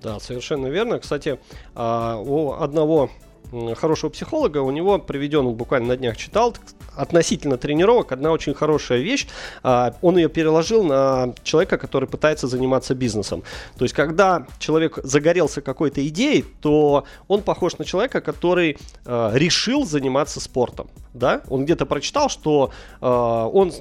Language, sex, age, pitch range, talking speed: Russian, male, 30-49, 125-165 Hz, 130 wpm